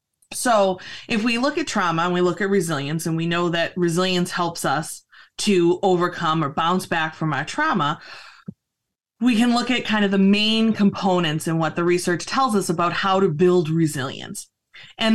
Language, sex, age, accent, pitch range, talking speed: English, female, 20-39, American, 165-210 Hz, 185 wpm